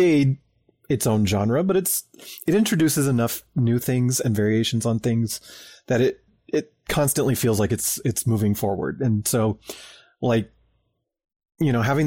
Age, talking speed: 30-49, 150 wpm